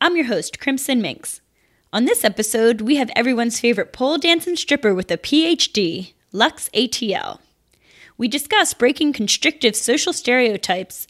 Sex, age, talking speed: female, 10-29, 140 wpm